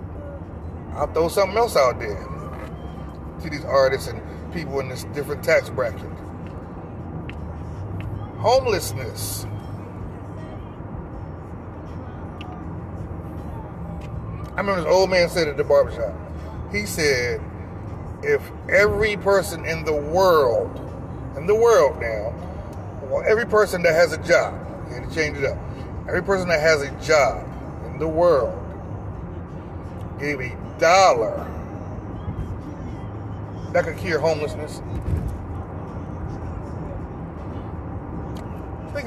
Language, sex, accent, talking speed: English, male, American, 105 wpm